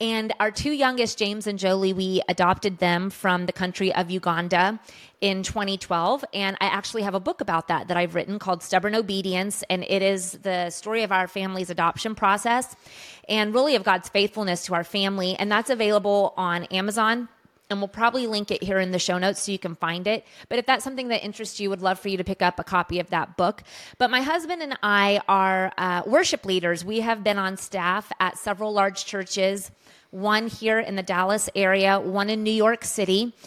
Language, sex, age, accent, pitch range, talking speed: English, female, 30-49, American, 185-220 Hz, 210 wpm